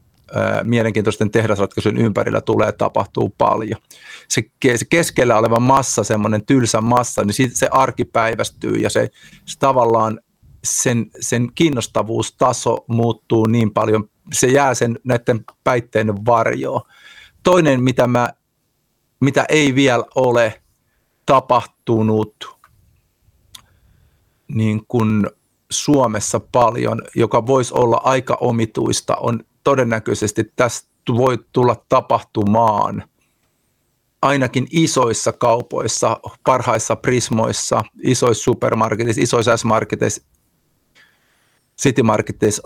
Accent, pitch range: native, 110-130 Hz